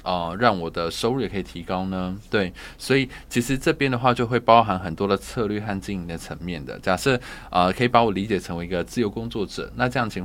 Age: 20-39